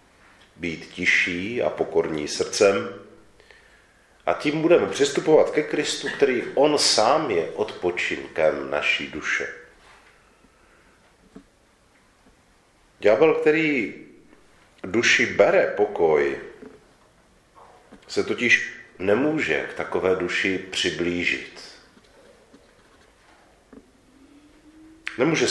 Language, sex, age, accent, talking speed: Czech, male, 40-59, native, 75 wpm